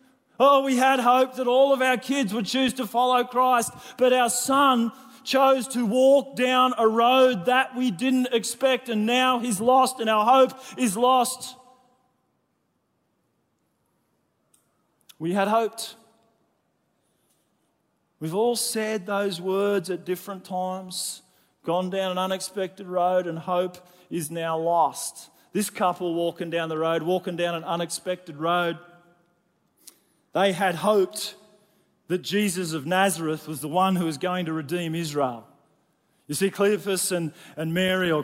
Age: 30-49